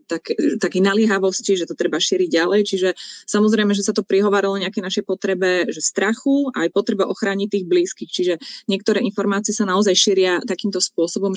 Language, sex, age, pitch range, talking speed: Slovak, female, 20-39, 185-220 Hz, 175 wpm